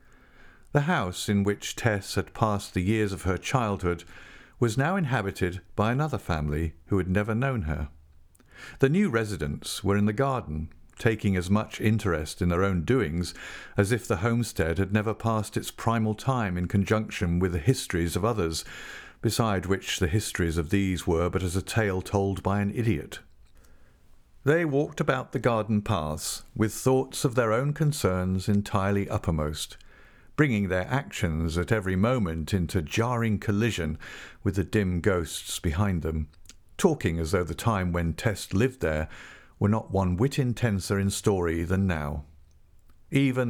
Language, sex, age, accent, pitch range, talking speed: English, male, 50-69, British, 85-115 Hz, 165 wpm